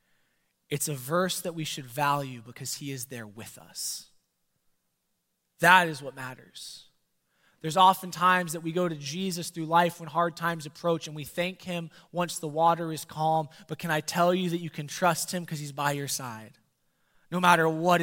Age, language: 20-39, English